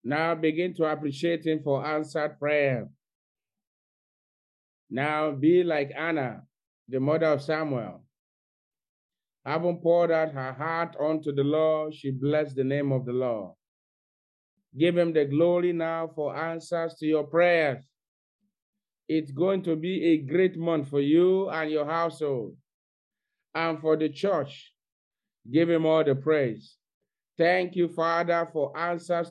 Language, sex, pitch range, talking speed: English, male, 140-170 Hz, 135 wpm